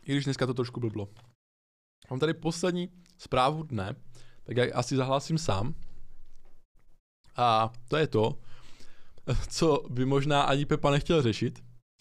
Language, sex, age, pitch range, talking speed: Czech, male, 20-39, 115-135 Hz, 135 wpm